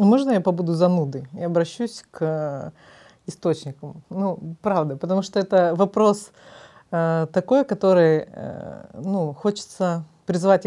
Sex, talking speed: female, 120 wpm